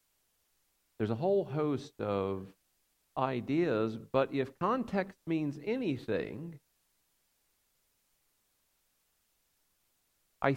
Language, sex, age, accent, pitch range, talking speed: English, male, 50-69, American, 110-150 Hz, 70 wpm